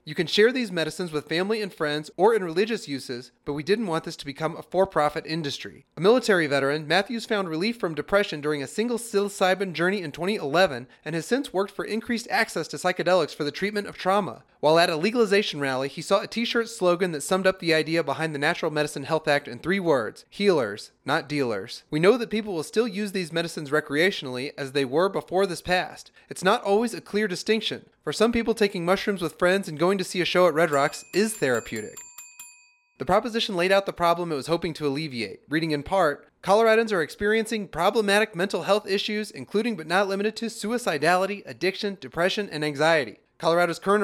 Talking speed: 205 wpm